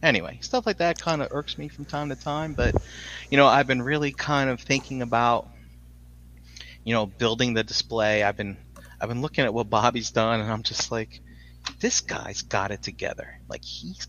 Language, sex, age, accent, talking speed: English, male, 30-49, American, 200 wpm